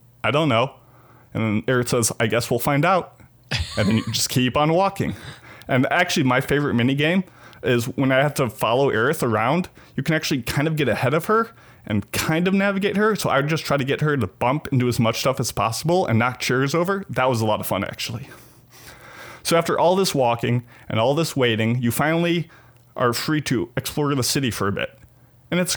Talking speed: 220 wpm